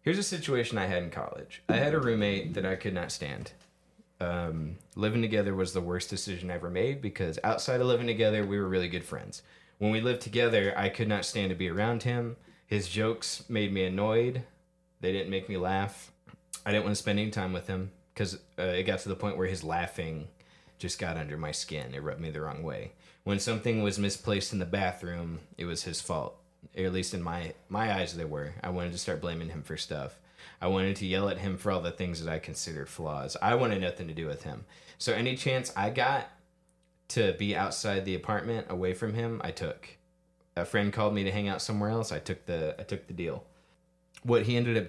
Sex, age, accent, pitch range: male, 20-39, American, 85-105 Hz